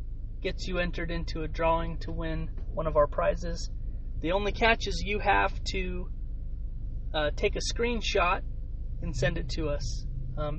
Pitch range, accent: 80-105 Hz, American